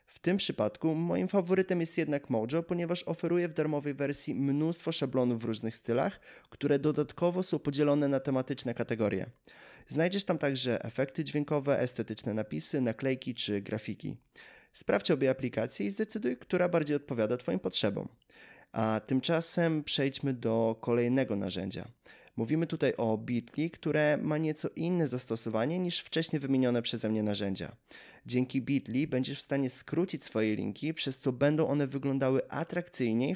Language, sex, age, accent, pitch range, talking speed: Polish, male, 20-39, native, 115-155 Hz, 145 wpm